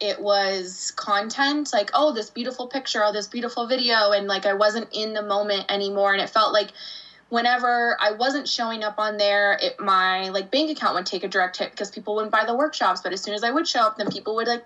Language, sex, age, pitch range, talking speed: English, female, 20-39, 195-230 Hz, 245 wpm